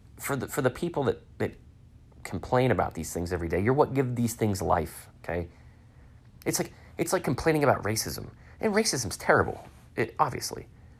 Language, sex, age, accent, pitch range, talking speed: English, male, 30-49, American, 105-135 Hz, 175 wpm